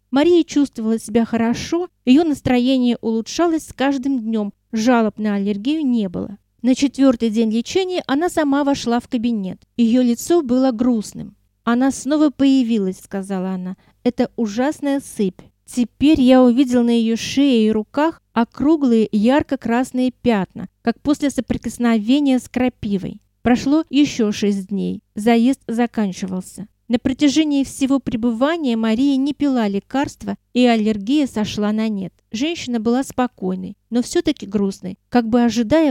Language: Russian